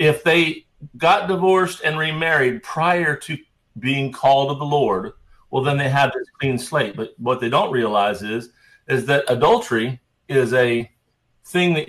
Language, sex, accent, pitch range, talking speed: English, male, American, 125-155 Hz, 165 wpm